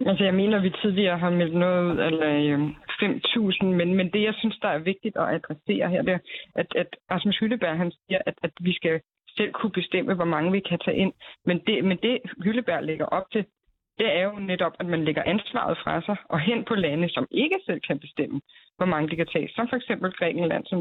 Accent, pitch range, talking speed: native, 175-210 Hz, 235 wpm